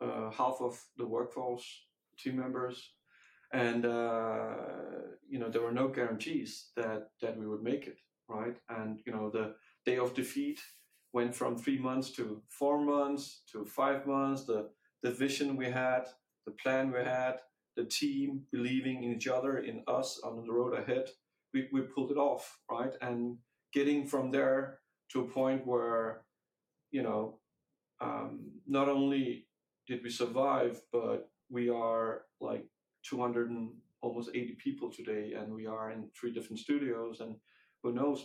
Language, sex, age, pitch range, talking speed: English, male, 40-59, 115-130 Hz, 160 wpm